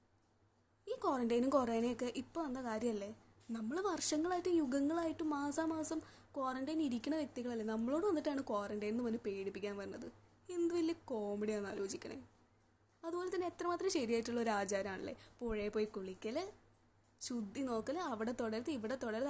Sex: female